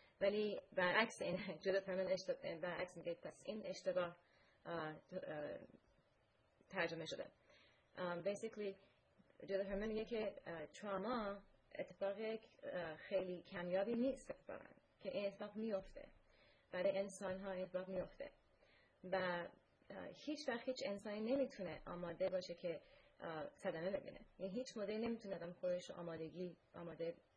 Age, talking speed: 30-49, 105 wpm